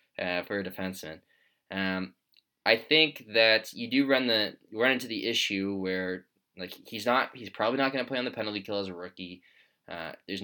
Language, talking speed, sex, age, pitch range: English, 200 wpm, male, 20-39, 95-115 Hz